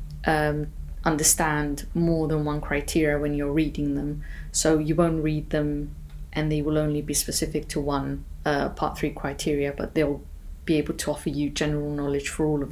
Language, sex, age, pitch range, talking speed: English, female, 30-49, 145-170 Hz, 185 wpm